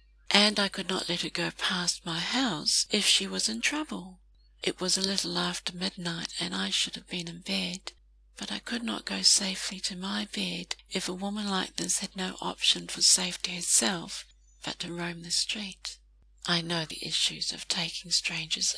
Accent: British